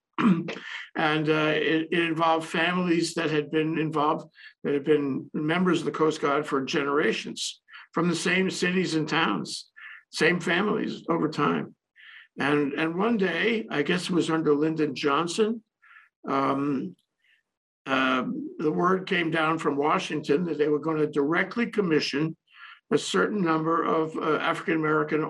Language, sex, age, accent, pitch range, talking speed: English, male, 60-79, American, 150-180 Hz, 145 wpm